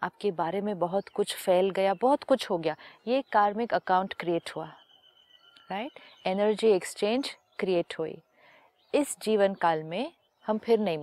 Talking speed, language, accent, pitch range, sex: 150 wpm, Hindi, native, 190-240 Hz, female